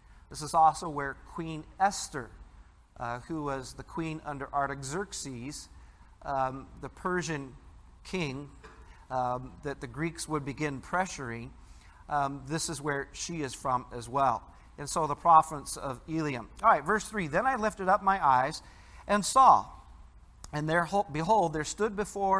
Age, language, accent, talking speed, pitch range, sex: 50-69, English, American, 155 wpm, 135-190 Hz, male